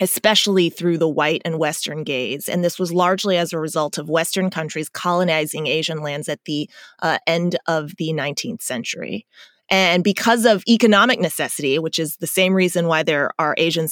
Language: English